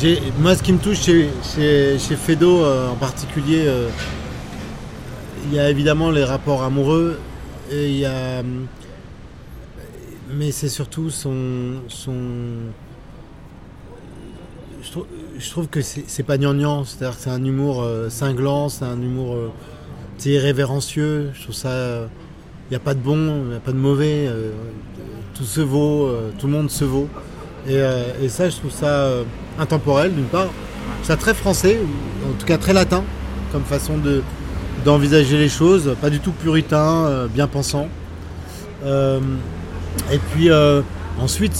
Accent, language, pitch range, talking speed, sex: French, French, 125-150 Hz, 160 wpm, male